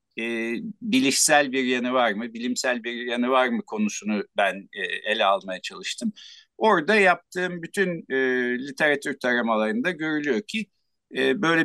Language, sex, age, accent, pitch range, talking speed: Turkish, male, 60-79, native, 125-200 Hz, 140 wpm